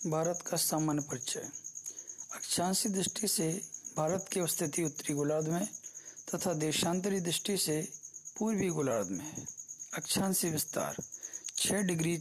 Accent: native